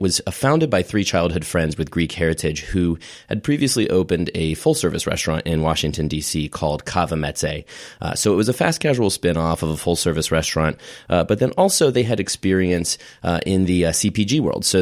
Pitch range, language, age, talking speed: 80-100 Hz, English, 30-49, 190 wpm